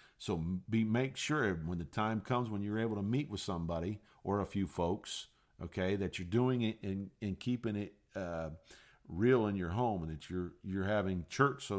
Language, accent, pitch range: English, American, 85-115 Hz